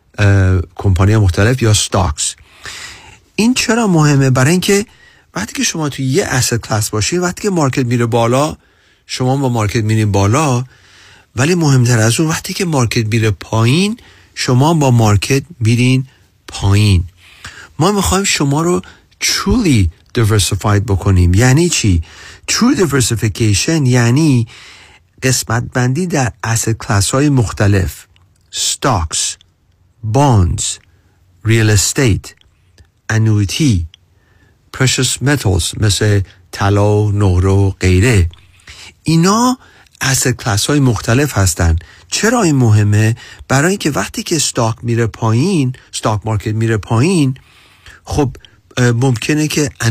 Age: 40-59